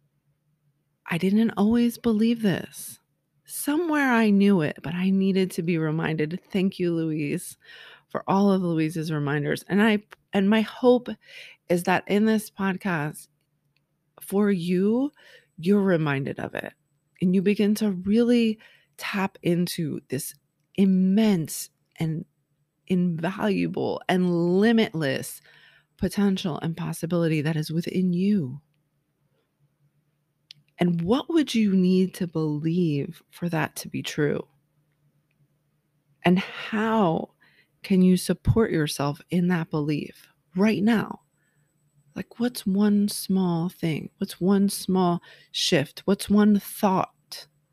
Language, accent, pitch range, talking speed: English, American, 150-195 Hz, 120 wpm